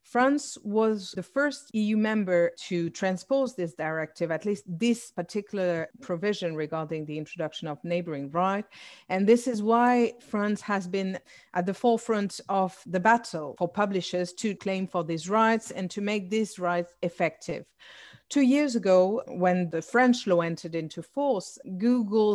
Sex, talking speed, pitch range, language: female, 155 wpm, 175-215 Hz, English